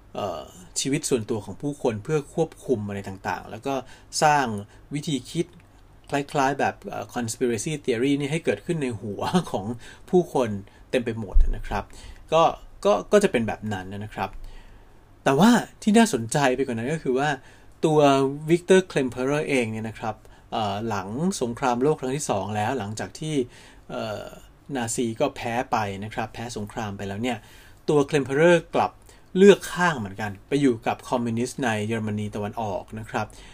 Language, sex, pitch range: Thai, male, 105-140 Hz